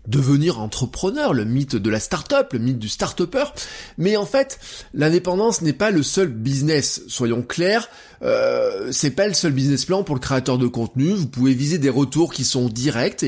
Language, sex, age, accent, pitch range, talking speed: French, male, 20-39, French, 130-200 Hz, 195 wpm